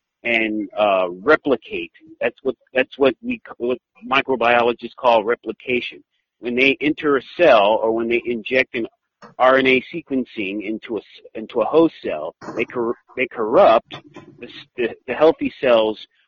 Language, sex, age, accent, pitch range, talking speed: English, male, 50-69, American, 120-185 Hz, 145 wpm